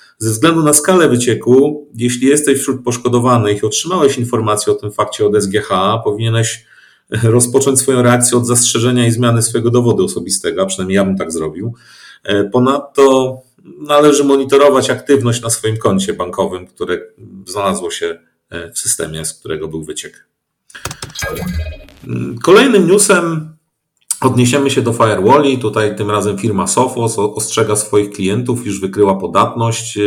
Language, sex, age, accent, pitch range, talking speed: Polish, male, 40-59, native, 105-135 Hz, 135 wpm